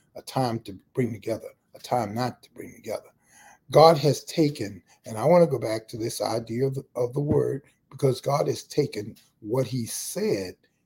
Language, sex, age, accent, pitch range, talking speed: English, male, 60-79, American, 110-145 Hz, 195 wpm